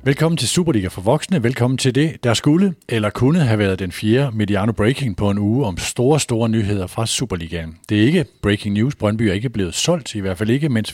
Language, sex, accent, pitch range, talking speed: Danish, male, native, 100-135 Hz, 225 wpm